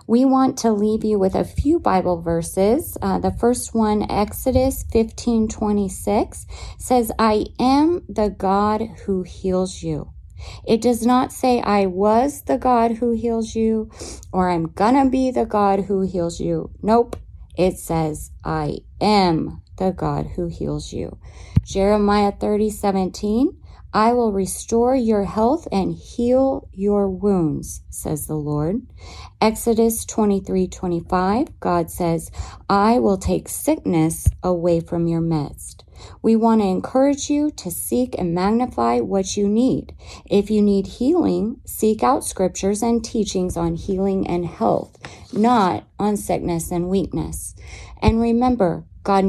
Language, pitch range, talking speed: English, 175-230 Hz, 145 wpm